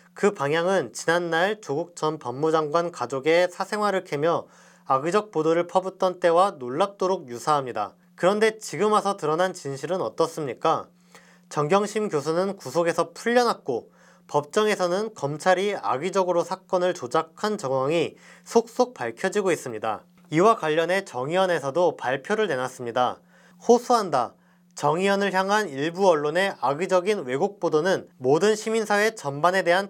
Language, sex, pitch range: Korean, male, 160-205 Hz